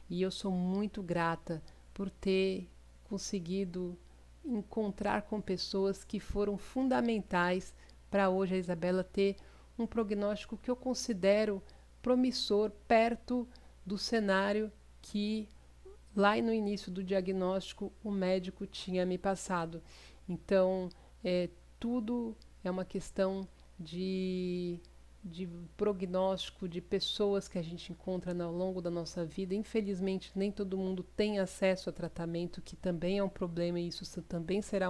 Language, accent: Portuguese, Brazilian